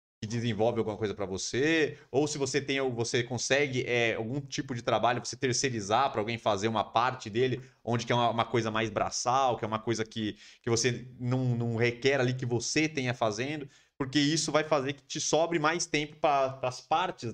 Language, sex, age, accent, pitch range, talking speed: Portuguese, male, 30-49, Brazilian, 110-140 Hz, 205 wpm